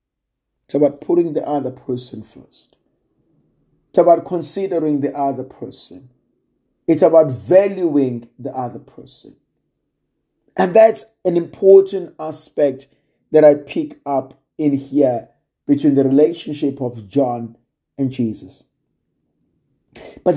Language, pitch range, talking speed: English, 135-195 Hz, 110 wpm